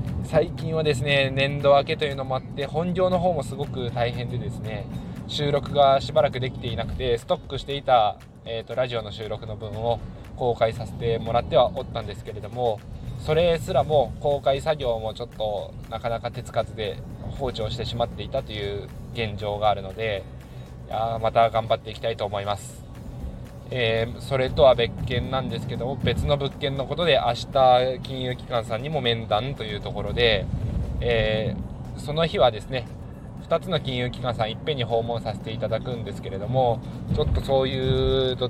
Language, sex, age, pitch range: Japanese, male, 20-39, 115-130 Hz